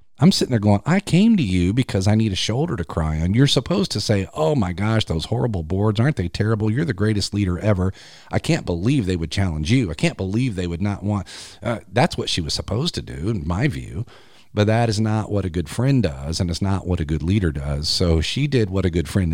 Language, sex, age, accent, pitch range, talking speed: English, male, 40-59, American, 80-110 Hz, 260 wpm